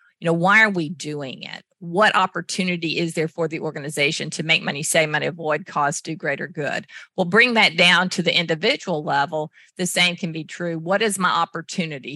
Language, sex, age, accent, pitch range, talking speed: English, female, 50-69, American, 155-180 Hz, 200 wpm